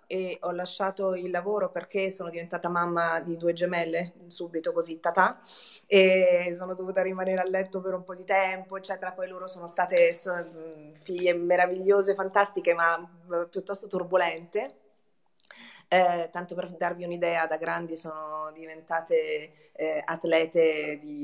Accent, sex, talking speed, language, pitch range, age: native, female, 140 wpm, Italian, 175-235 Hz, 30-49